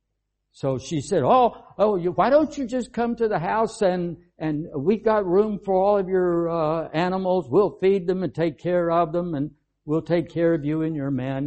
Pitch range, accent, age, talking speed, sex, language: 100-155 Hz, American, 60-79, 220 wpm, male, English